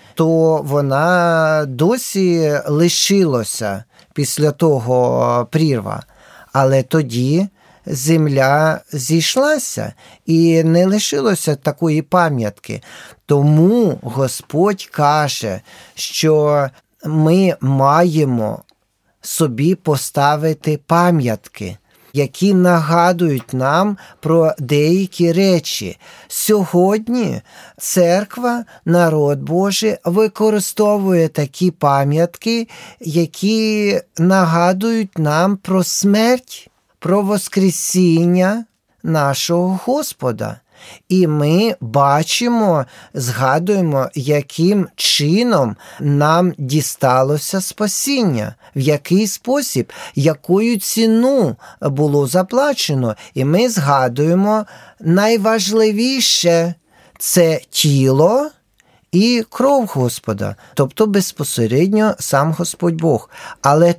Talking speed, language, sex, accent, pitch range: 75 wpm, Ukrainian, male, native, 145-195 Hz